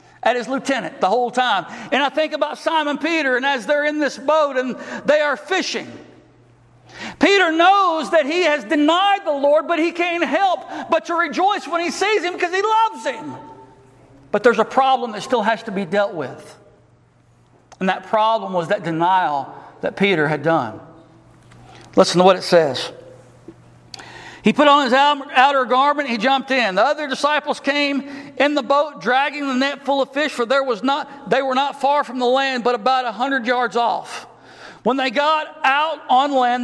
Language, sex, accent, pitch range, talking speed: English, male, American, 225-290 Hz, 190 wpm